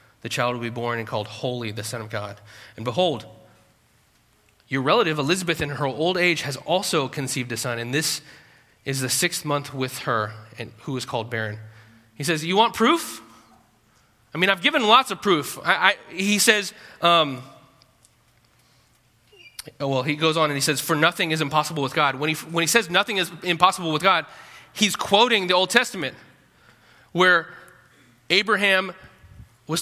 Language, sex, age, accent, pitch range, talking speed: English, male, 20-39, American, 120-150 Hz, 175 wpm